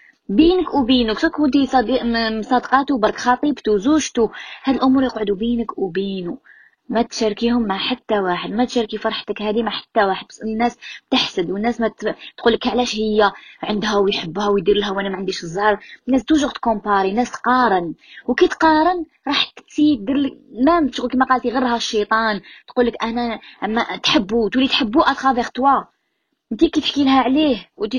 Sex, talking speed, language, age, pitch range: female, 150 wpm, Arabic, 20-39, 210-275 Hz